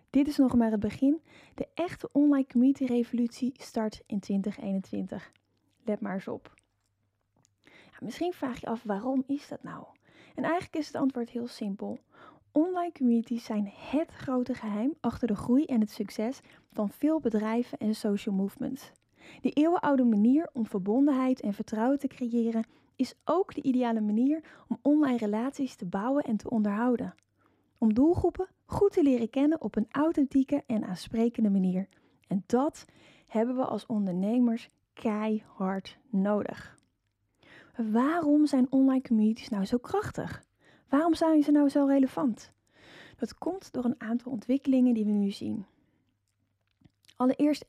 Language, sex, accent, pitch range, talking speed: Dutch, female, Dutch, 215-275 Hz, 150 wpm